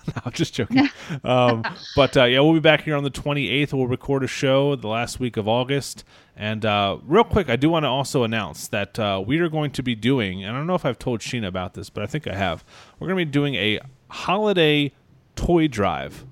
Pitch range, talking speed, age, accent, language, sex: 105-135 Hz, 245 wpm, 30-49, American, English, male